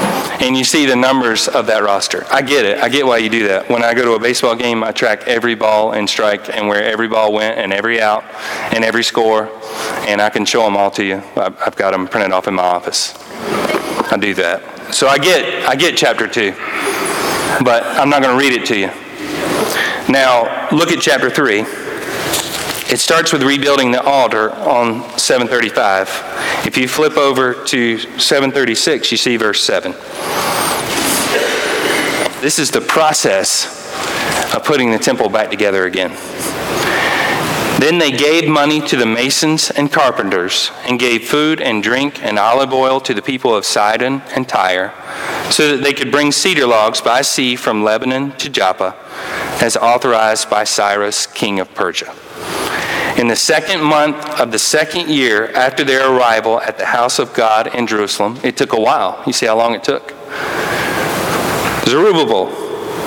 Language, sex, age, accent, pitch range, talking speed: English, male, 30-49, American, 105-140 Hz, 175 wpm